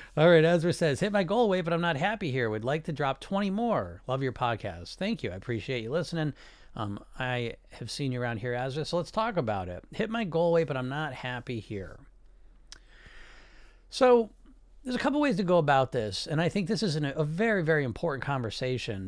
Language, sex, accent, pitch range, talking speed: English, male, American, 115-155 Hz, 220 wpm